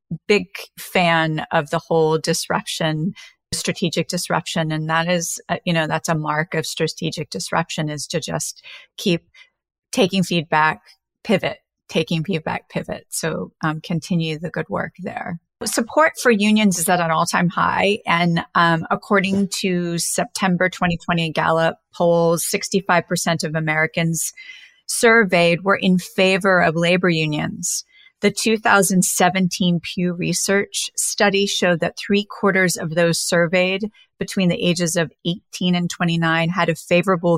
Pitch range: 165-200 Hz